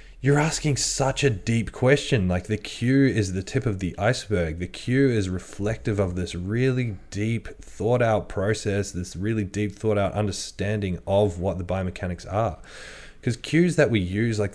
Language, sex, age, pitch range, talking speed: English, male, 20-39, 90-110 Hz, 175 wpm